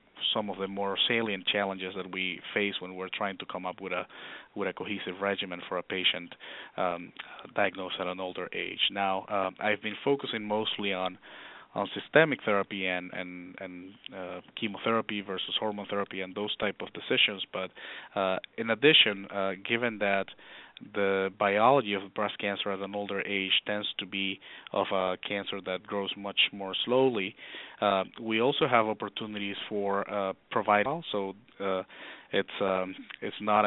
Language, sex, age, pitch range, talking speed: English, male, 30-49, 95-105 Hz, 170 wpm